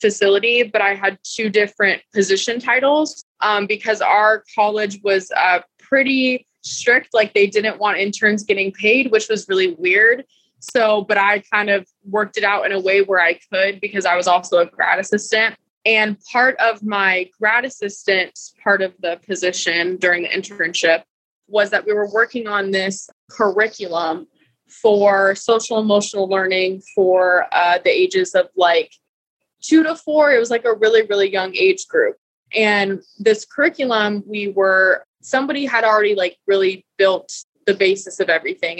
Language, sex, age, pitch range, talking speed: English, female, 20-39, 185-220 Hz, 165 wpm